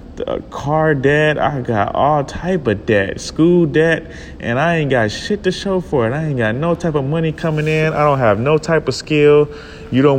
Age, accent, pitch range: 30-49, American, 100-130 Hz